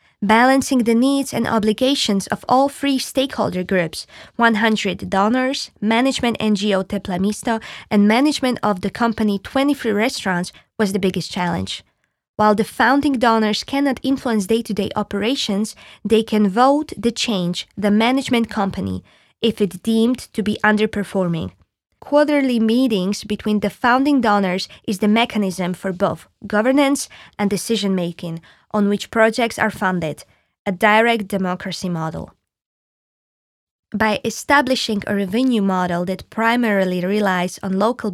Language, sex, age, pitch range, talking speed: Slovak, female, 20-39, 195-235 Hz, 125 wpm